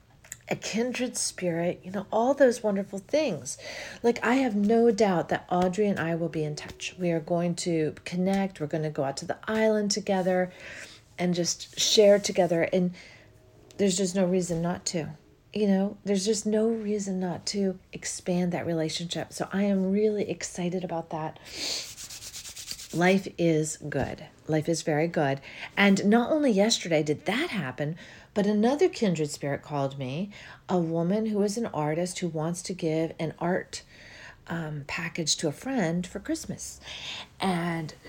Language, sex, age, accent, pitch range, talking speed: English, female, 40-59, American, 160-215 Hz, 165 wpm